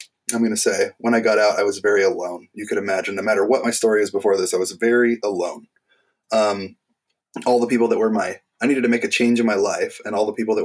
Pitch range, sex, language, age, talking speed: 110-170 Hz, male, English, 20-39, 270 wpm